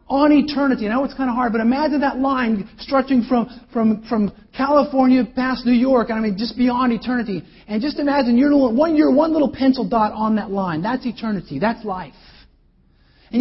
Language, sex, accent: English, male, American